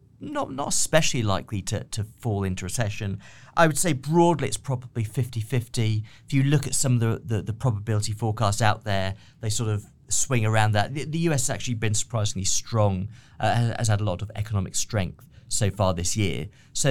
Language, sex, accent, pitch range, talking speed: English, male, British, 100-125 Hz, 200 wpm